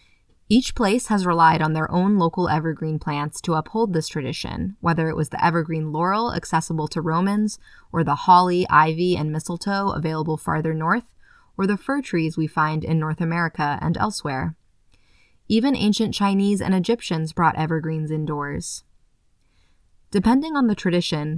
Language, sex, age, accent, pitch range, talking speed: English, female, 20-39, American, 155-195 Hz, 155 wpm